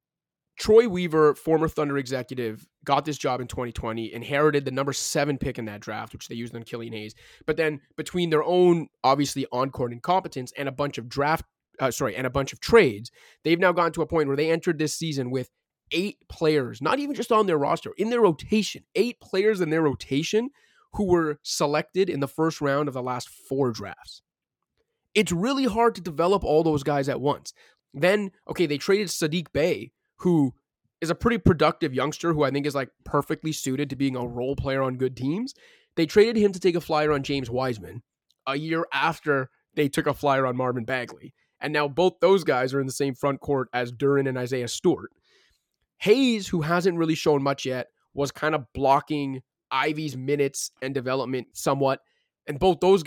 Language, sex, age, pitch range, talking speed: English, male, 30-49, 135-165 Hz, 200 wpm